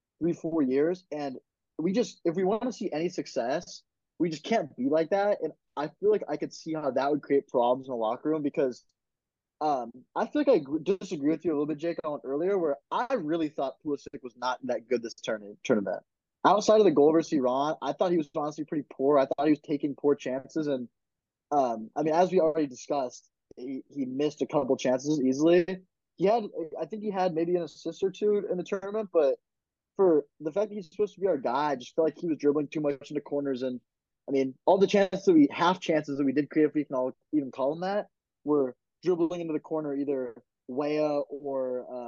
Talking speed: 230 wpm